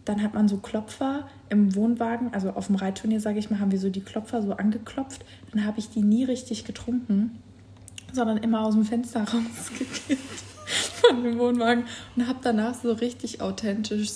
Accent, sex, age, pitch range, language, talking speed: German, female, 20-39, 195-225 Hz, German, 180 wpm